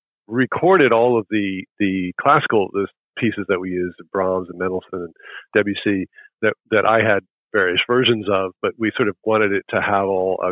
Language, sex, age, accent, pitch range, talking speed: English, male, 50-69, American, 95-115 Hz, 190 wpm